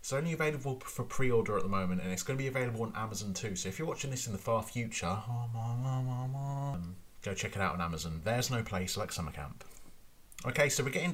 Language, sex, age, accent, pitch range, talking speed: English, male, 30-49, British, 90-125 Hz, 225 wpm